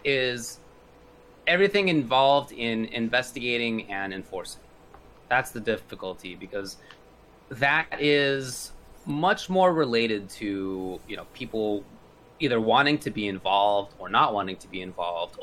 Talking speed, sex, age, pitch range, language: 120 wpm, male, 30-49, 105-145 Hz, English